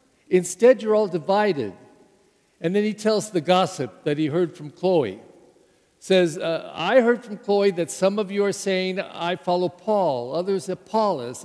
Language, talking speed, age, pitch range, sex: English, 170 wpm, 50-69, 155-205 Hz, male